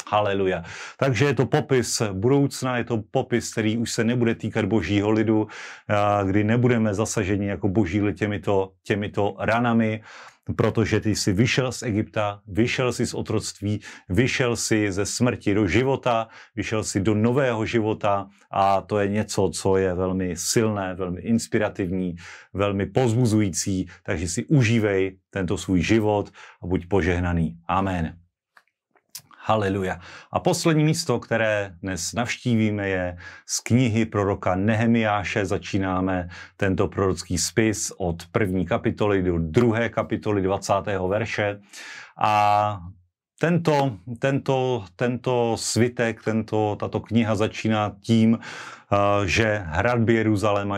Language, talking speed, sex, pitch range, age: Slovak, 125 wpm, male, 95-115 Hz, 40-59